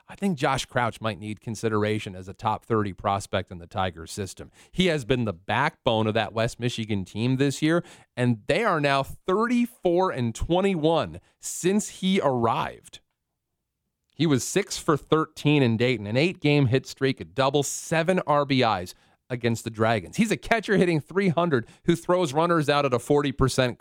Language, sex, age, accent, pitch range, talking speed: English, male, 40-59, American, 115-170 Hz, 175 wpm